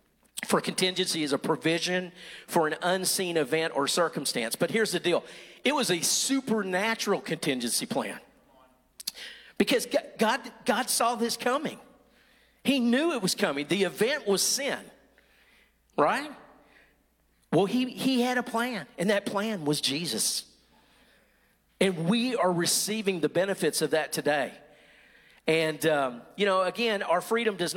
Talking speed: 140 wpm